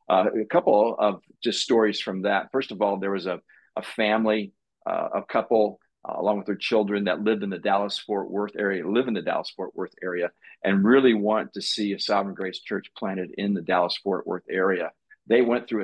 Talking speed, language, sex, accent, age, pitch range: 210 wpm, English, male, American, 50-69, 100-110 Hz